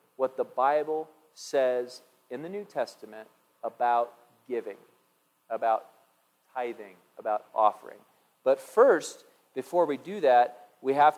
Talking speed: 120 wpm